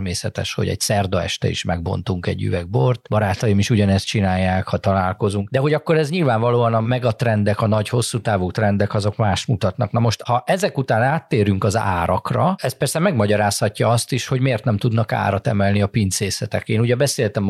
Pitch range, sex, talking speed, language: 95-125 Hz, male, 185 wpm, Hungarian